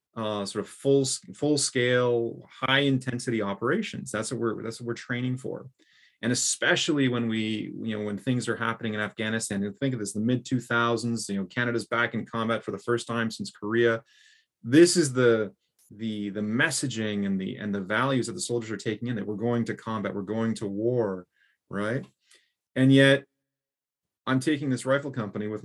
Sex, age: male, 30-49